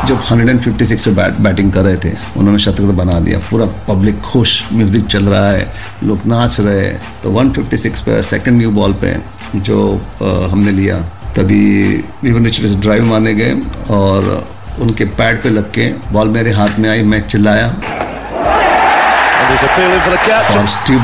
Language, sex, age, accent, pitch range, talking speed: Hindi, male, 50-69, native, 105-125 Hz, 150 wpm